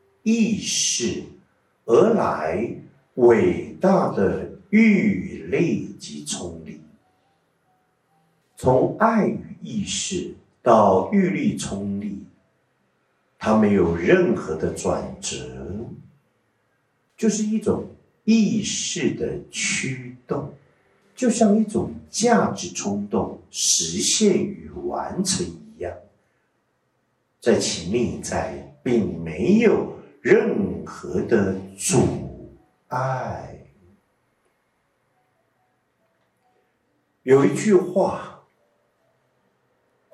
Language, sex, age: Chinese, male, 60-79